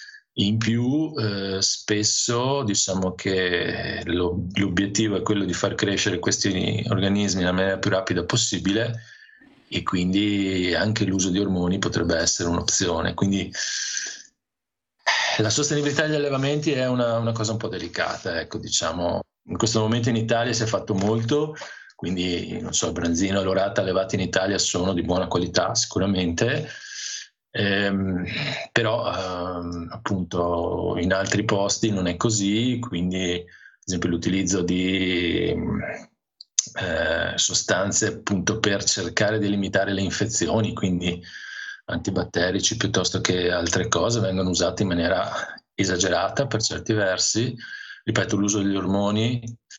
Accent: native